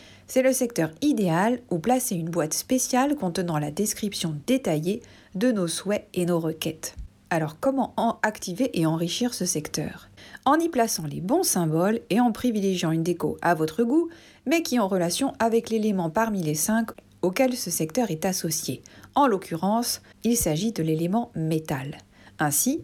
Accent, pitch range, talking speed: French, 165-245 Hz, 165 wpm